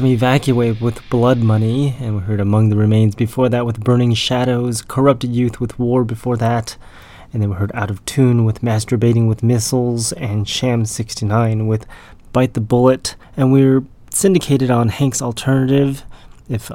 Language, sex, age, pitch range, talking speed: English, male, 20-39, 110-125 Hz, 160 wpm